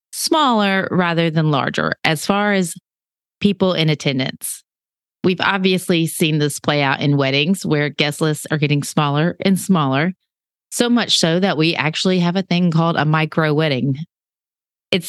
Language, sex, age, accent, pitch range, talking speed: English, female, 30-49, American, 155-200 Hz, 160 wpm